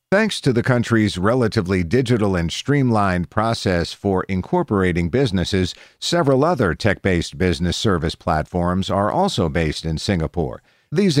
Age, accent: 50-69, American